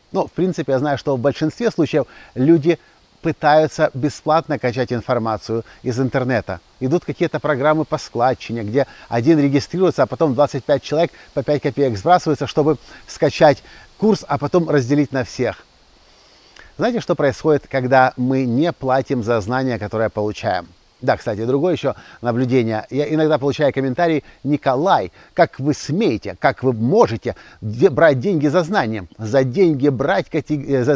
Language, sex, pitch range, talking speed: Russian, male, 120-160 Hz, 140 wpm